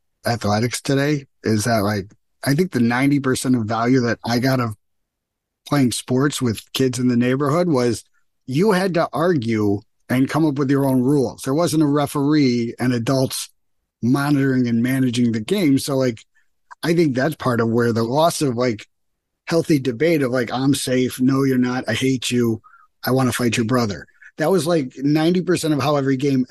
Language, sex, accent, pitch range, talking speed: English, male, American, 115-145 Hz, 190 wpm